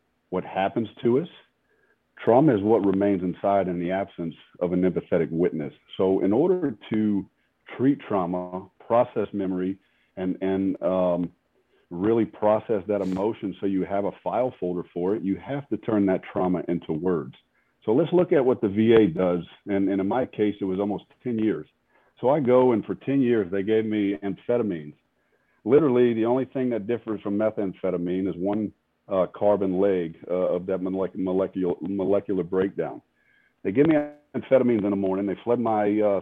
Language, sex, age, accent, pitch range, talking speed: English, male, 40-59, American, 95-110 Hz, 175 wpm